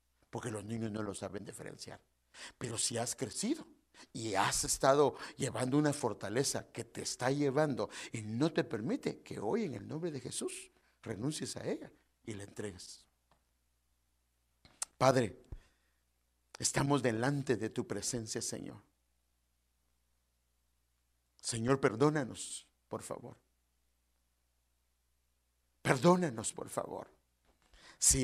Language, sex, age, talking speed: English, male, 60-79, 115 wpm